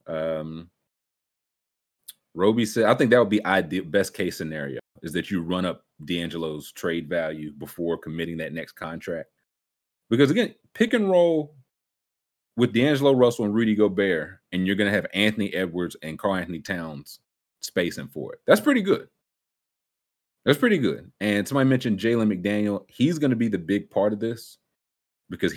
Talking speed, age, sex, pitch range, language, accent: 165 wpm, 30-49, male, 85-110 Hz, English, American